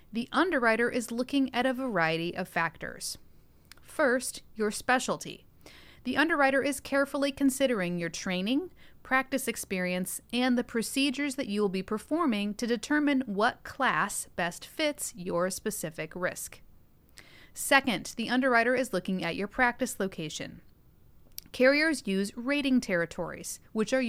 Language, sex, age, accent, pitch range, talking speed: English, female, 30-49, American, 185-260 Hz, 130 wpm